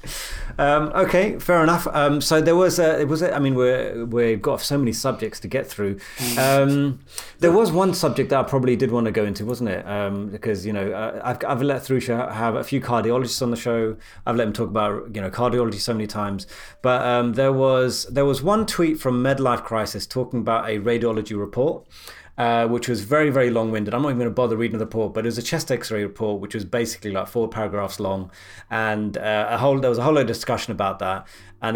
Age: 30-49